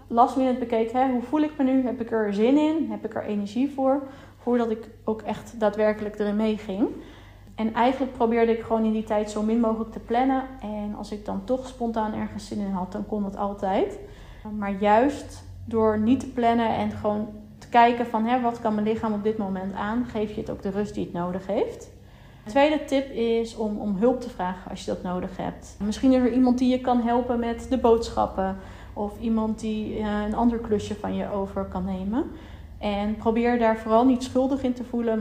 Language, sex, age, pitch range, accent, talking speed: Dutch, female, 30-49, 210-245 Hz, Dutch, 220 wpm